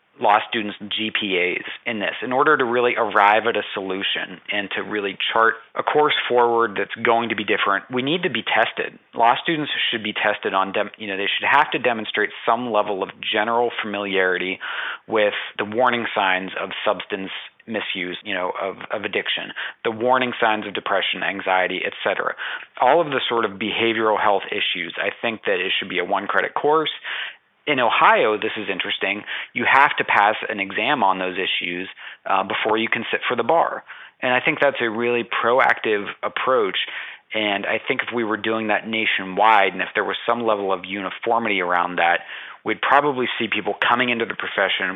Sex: male